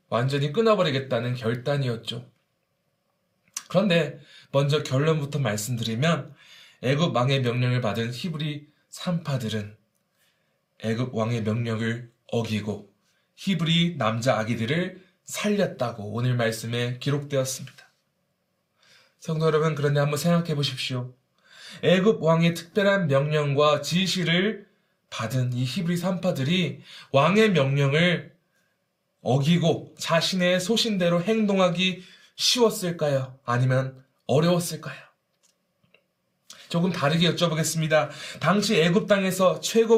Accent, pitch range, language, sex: native, 135-185 Hz, Korean, male